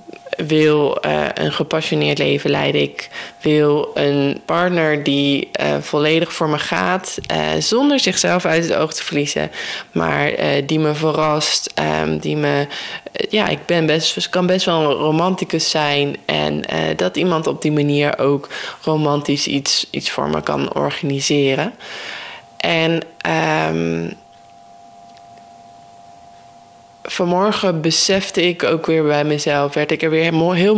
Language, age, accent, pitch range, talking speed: Dutch, 20-39, Dutch, 140-175 Hz, 140 wpm